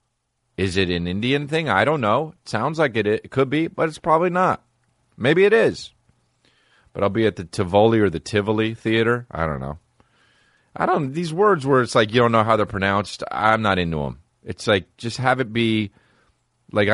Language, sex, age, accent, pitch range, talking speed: English, male, 30-49, American, 85-120 Hz, 210 wpm